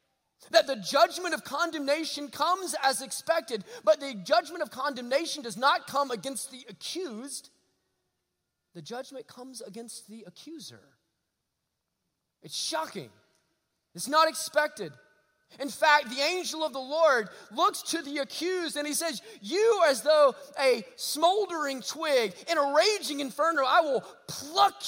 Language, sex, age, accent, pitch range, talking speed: English, male, 30-49, American, 190-295 Hz, 135 wpm